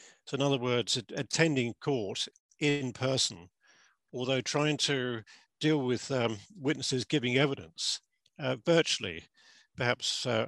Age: 50-69